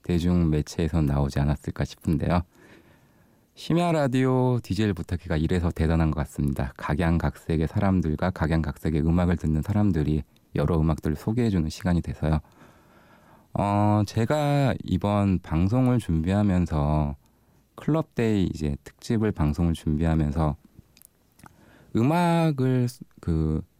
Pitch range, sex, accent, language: 80-110 Hz, male, native, Korean